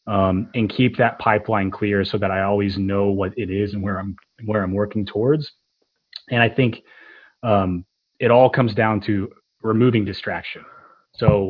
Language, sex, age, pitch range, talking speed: English, male, 30-49, 95-120 Hz, 170 wpm